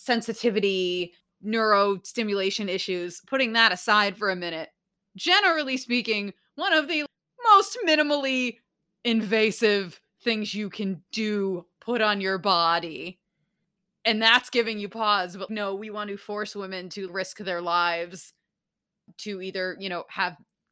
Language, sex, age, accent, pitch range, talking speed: English, female, 20-39, American, 180-225 Hz, 135 wpm